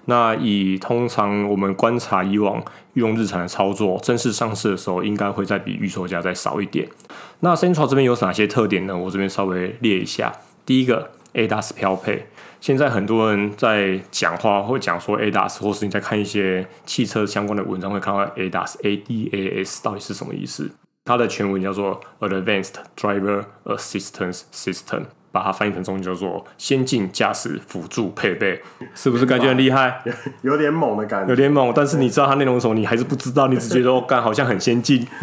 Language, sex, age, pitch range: Chinese, male, 20-39, 100-125 Hz